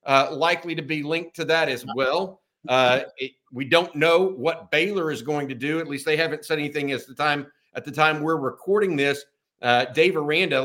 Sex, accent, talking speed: male, American, 215 wpm